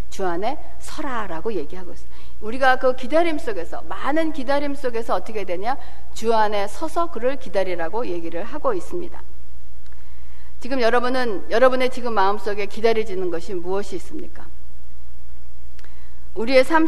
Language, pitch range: Korean, 180-255 Hz